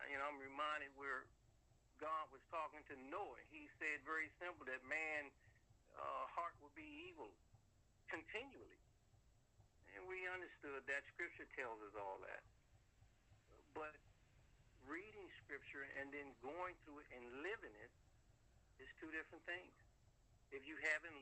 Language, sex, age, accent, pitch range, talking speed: English, male, 60-79, American, 120-165 Hz, 140 wpm